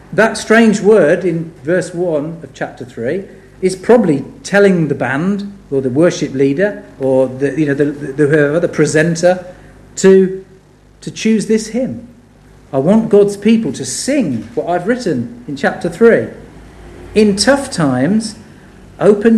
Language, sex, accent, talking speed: English, male, British, 150 wpm